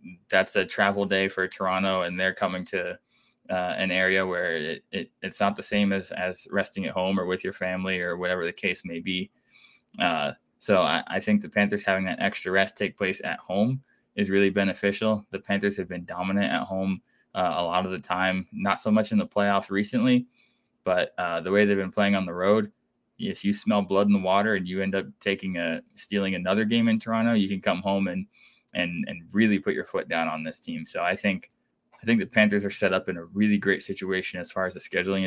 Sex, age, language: male, 20-39, English